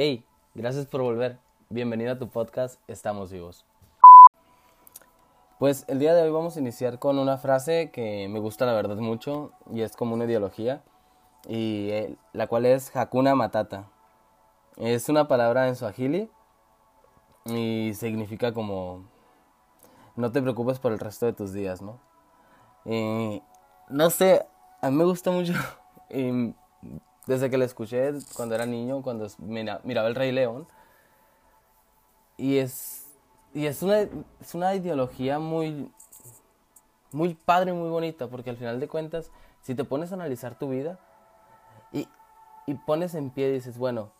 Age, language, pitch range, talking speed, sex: 20-39, Spanish, 110-140 Hz, 150 wpm, male